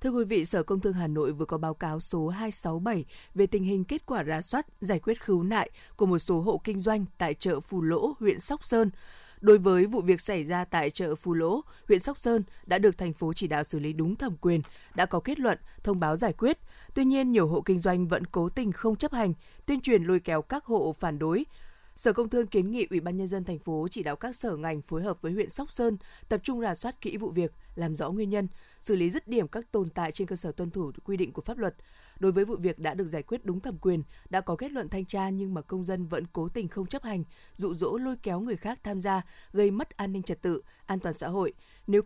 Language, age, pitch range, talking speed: Vietnamese, 20-39, 170-215 Hz, 265 wpm